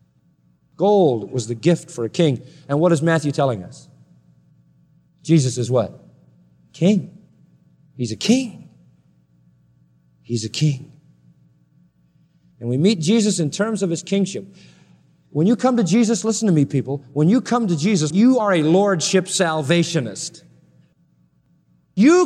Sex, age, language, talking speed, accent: male, 40-59, English, 140 wpm, American